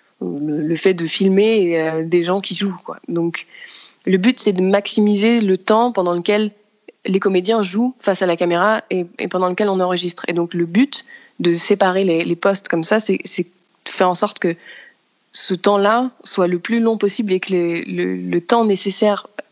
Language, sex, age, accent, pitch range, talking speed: French, female, 20-39, French, 175-205 Hz, 205 wpm